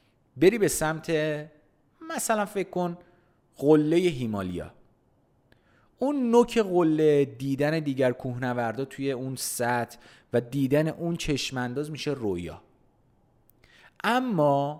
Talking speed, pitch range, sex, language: 95 wpm, 120-175 Hz, male, Persian